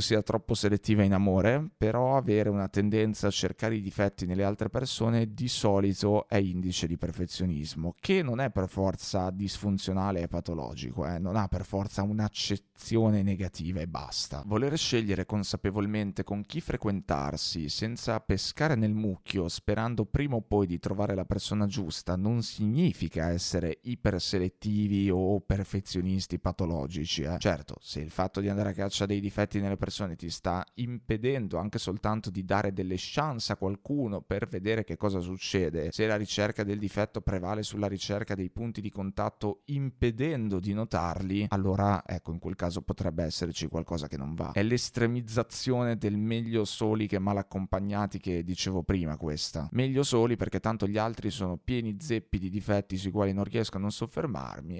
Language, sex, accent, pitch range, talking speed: Italian, male, native, 95-110 Hz, 165 wpm